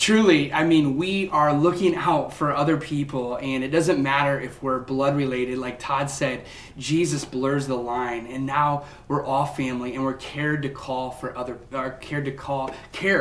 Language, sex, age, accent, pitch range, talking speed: English, male, 30-49, American, 125-145 Hz, 190 wpm